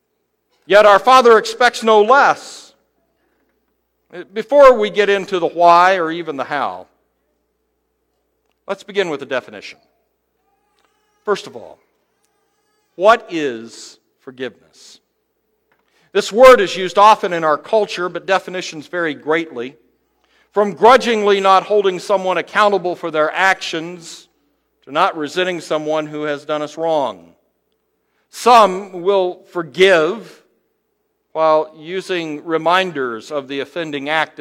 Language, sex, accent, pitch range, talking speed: English, male, American, 160-215 Hz, 115 wpm